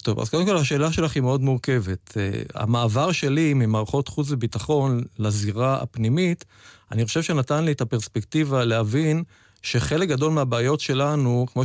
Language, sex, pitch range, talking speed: Hebrew, male, 115-145 Hz, 150 wpm